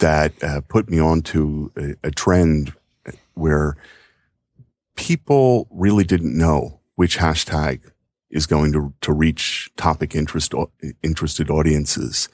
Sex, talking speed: male, 115 wpm